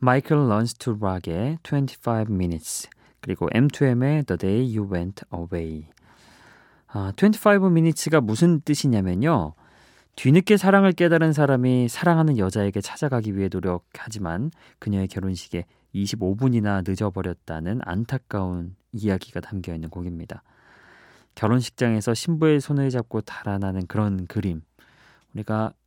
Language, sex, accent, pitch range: Korean, male, native, 95-140 Hz